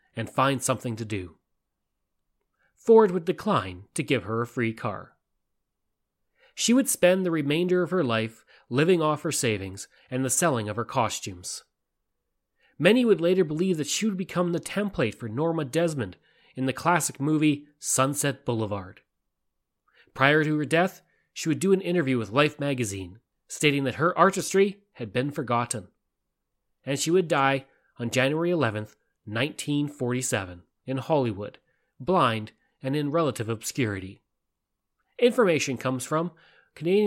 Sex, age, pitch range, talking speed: male, 30-49, 120-170 Hz, 145 wpm